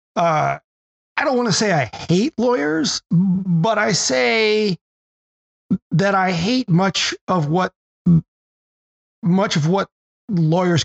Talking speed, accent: 120 wpm, American